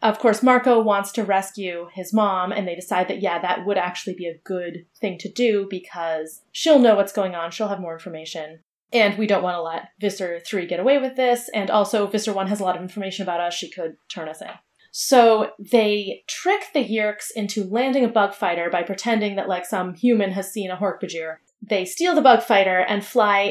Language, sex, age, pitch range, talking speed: English, female, 30-49, 185-230 Hz, 225 wpm